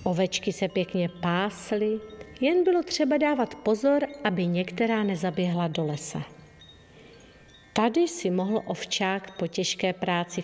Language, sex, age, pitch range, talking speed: Czech, female, 50-69, 175-235 Hz, 120 wpm